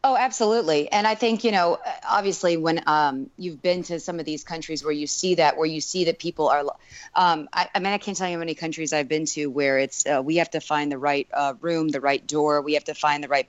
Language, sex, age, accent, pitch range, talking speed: English, female, 30-49, American, 145-170 Hz, 270 wpm